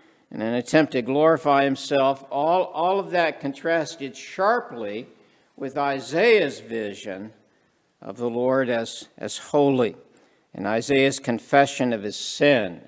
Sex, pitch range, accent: male, 115-140 Hz, American